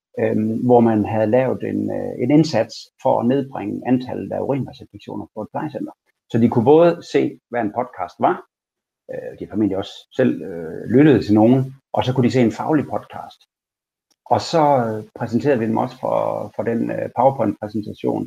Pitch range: 110-150 Hz